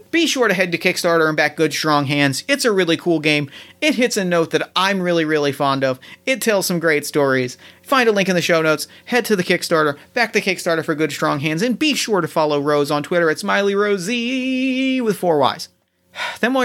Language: English